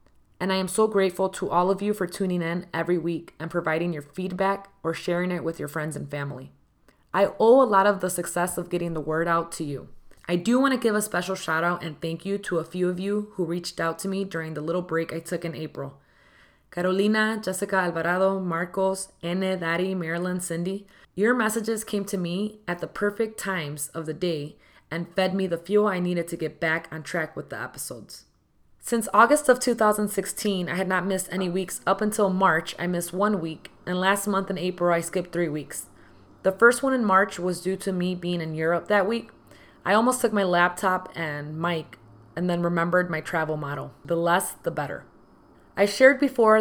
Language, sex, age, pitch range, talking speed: English, female, 20-39, 165-195 Hz, 210 wpm